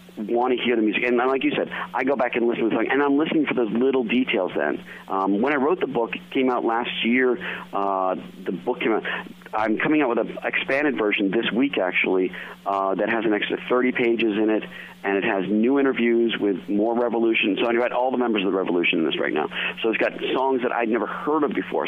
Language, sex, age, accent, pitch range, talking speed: English, male, 40-59, American, 100-125 Hz, 250 wpm